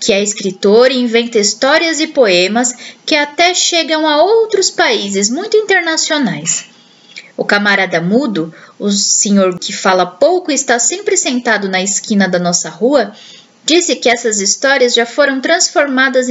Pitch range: 210-290 Hz